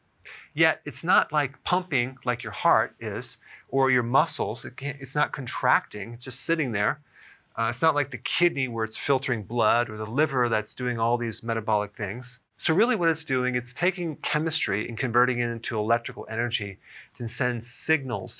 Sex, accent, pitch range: male, American, 110-135 Hz